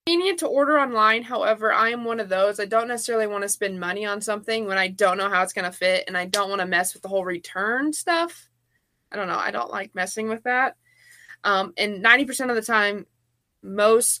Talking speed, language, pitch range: 230 wpm, English, 190-235 Hz